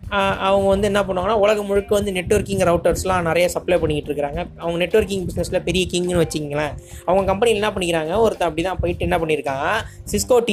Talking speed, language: 175 wpm, Tamil